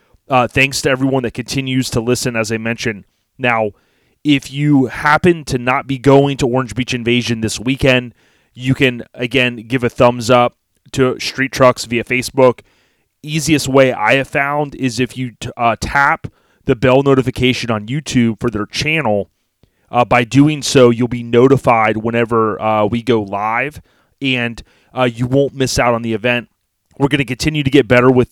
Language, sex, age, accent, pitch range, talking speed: English, male, 30-49, American, 115-130 Hz, 180 wpm